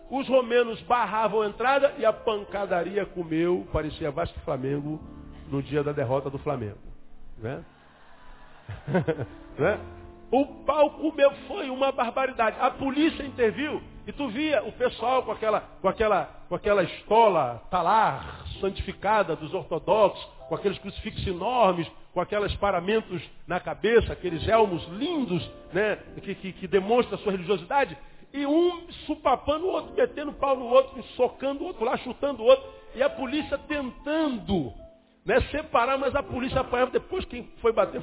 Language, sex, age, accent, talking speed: Portuguese, male, 50-69, Brazilian, 140 wpm